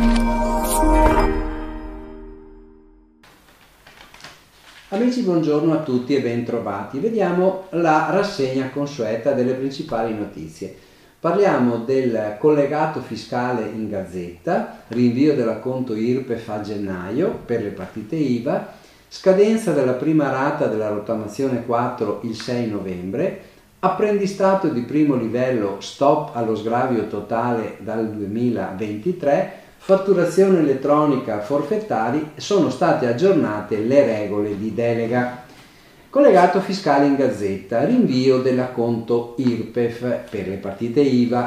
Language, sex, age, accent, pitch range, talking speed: Italian, male, 50-69, native, 110-155 Hz, 105 wpm